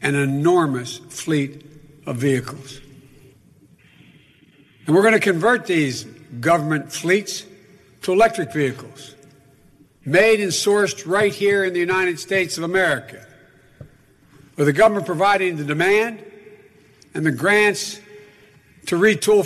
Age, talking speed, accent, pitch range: 60-79, 115 wpm, American, 150-205 Hz